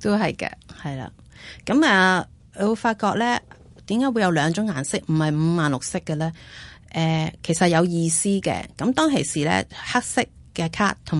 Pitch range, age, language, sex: 155-210 Hz, 30-49, Chinese, female